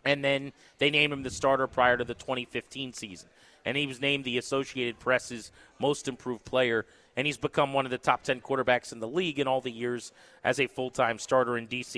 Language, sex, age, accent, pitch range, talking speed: English, male, 30-49, American, 125-160 Hz, 220 wpm